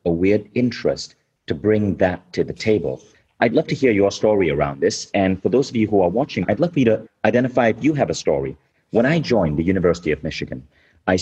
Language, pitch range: English, 85-120 Hz